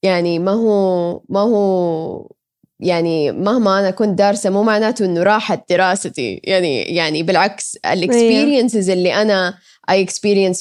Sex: female